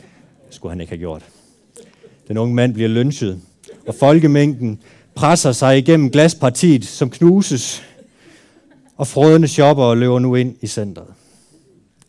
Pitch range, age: 110-150 Hz, 30-49